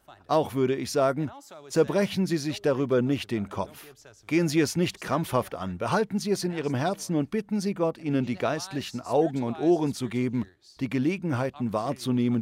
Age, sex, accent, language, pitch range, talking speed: 40-59, male, German, German, 130-190 Hz, 185 wpm